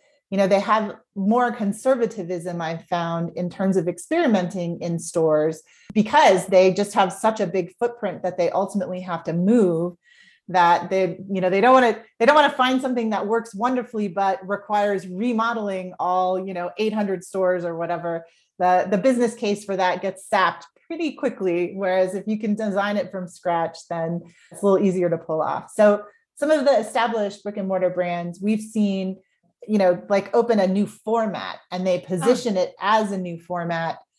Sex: female